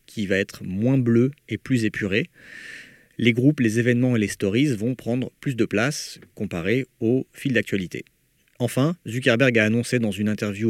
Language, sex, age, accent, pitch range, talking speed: French, male, 40-59, French, 105-135 Hz, 175 wpm